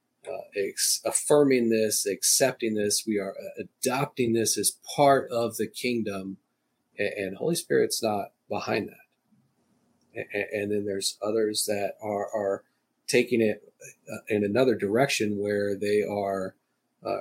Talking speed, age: 145 wpm, 40-59